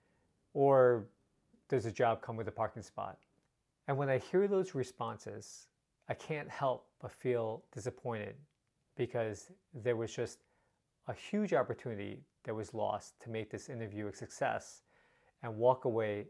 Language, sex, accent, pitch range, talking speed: English, male, American, 110-130 Hz, 145 wpm